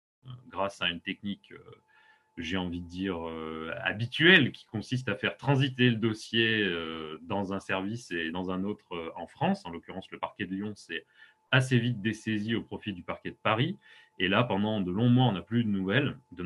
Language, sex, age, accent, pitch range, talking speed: French, male, 30-49, French, 95-125 Hz, 195 wpm